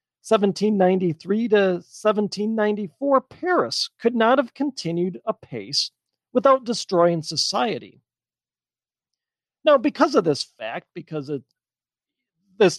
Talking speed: 90 wpm